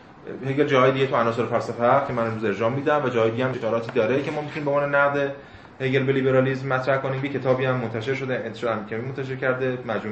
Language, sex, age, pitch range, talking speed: Persian, male, 30-49, 115-145 Hz, 225 wpm